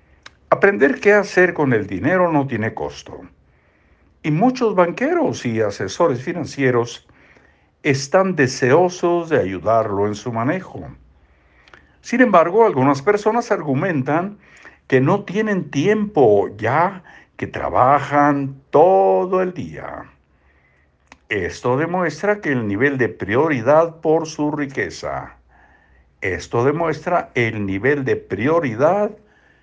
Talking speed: 110 wpm